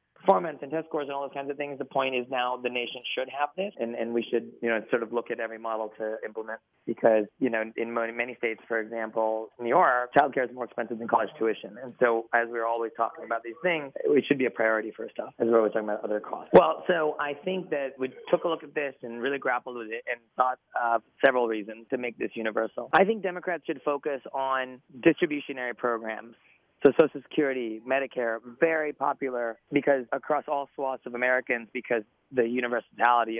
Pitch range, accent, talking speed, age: 115-140 Hz, American, 225 wpm, 30-49